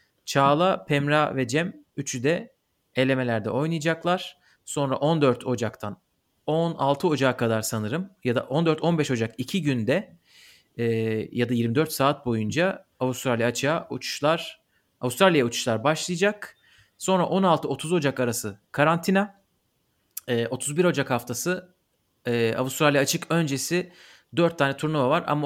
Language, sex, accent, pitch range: Turkish, male, native, 125-165 Hz